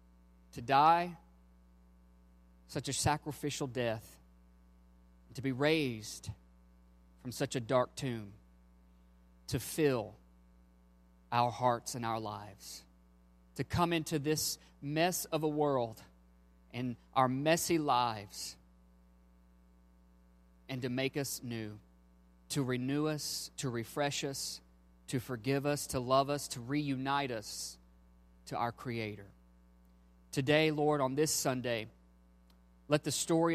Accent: American